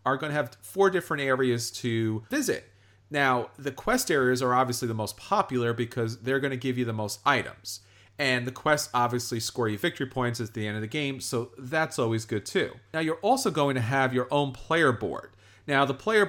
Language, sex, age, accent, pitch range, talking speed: English, male, 40-59, American, 115-150 Hz, 215 wpm